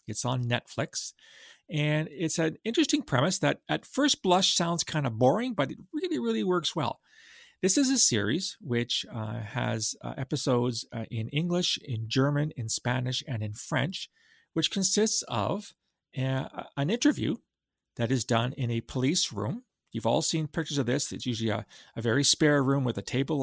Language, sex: English, male